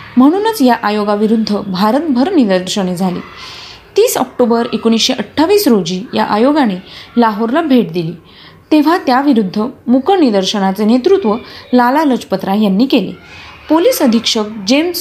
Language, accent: Marathi, native